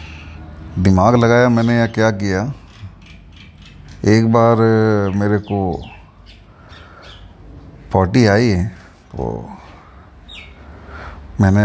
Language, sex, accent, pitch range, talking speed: Hindi, male, native, 90-115 Hz, 75 wpm